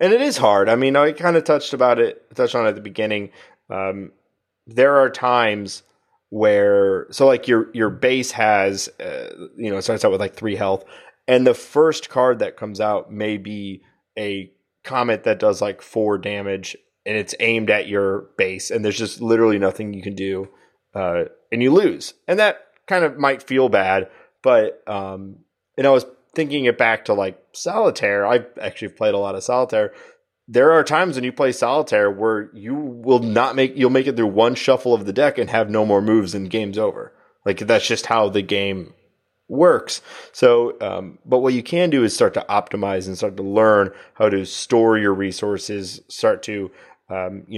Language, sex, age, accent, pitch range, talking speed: English, male, 30-49, American, 100-145 Hz, 195 wpm